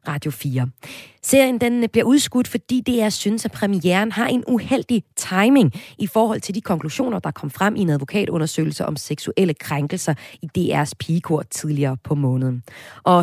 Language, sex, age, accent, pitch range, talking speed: Danish, female, 30-49, native, 150-220 Hz, 165 wpm